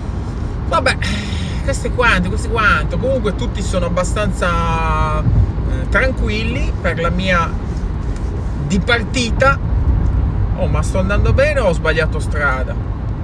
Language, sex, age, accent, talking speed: Italian, male, 30-49, native, 110 wpm